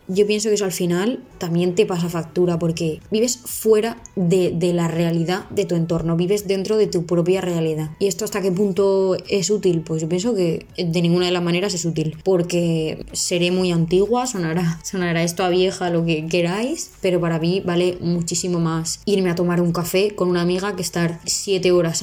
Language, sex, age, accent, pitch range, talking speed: Spanish, female, 20-39, Spanish, 175-200 Hz, 200 wpm